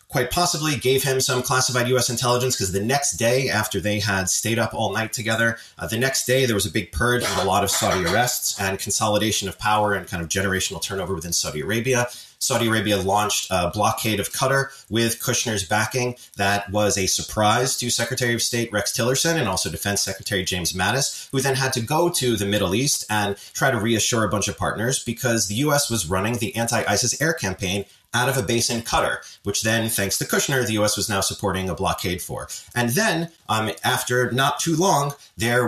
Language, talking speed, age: English, 210 wpm, 30-49